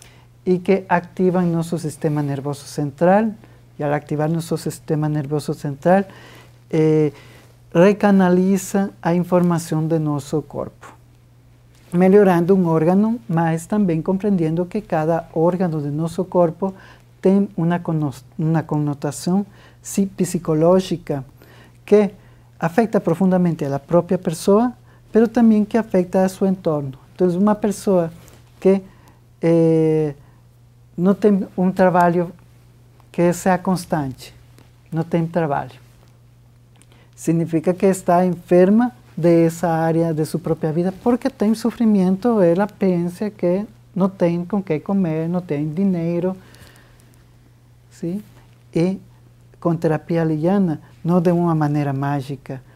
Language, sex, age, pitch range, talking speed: Portuguese, male, 50-69, 140-185 Hz, 115 wpm